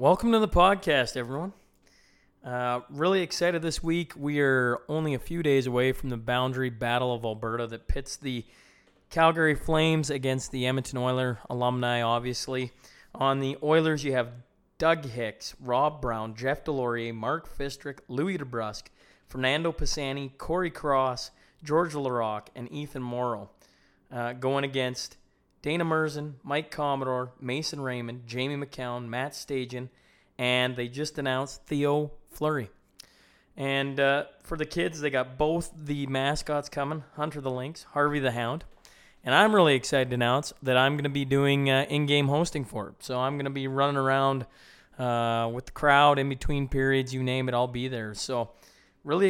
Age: 20-39